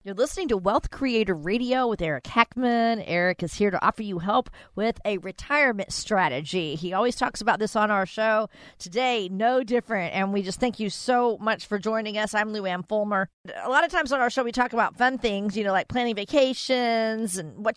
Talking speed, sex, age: 215 wpm, female, 40-59